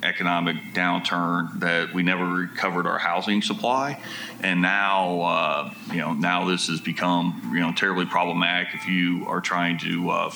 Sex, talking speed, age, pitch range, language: male, 160 wpm, 30-49, 90-100 Hz, English